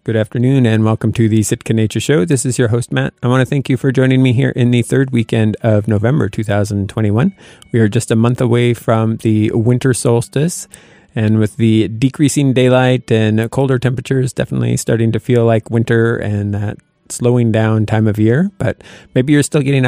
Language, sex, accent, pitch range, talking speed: English, male, American, 110-130 Hz, 200 wpm